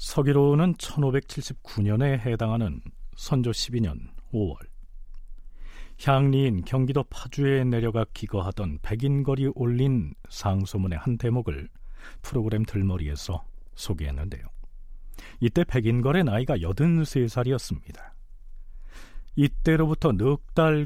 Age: 40-59